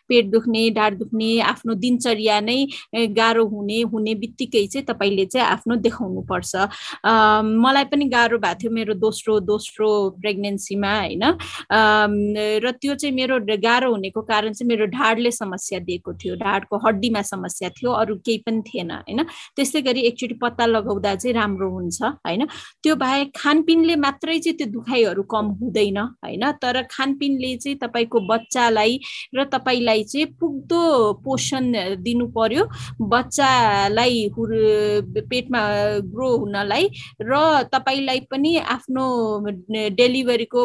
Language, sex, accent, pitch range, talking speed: English, female, Indian, 215-255 Hz, 90 wpm